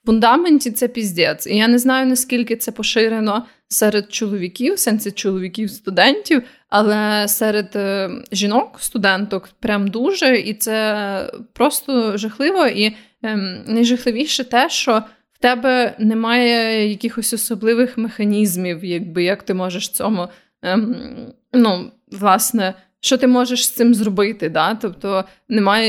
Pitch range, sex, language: 200-240 Hz, female, Ukrainian